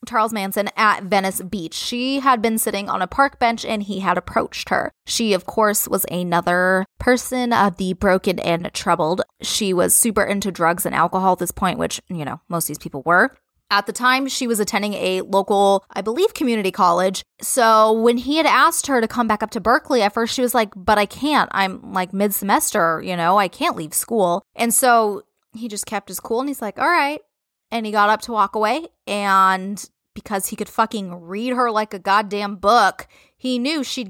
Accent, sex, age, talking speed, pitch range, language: American, female, 20-39, 215 wpm, 190-240 Hz, English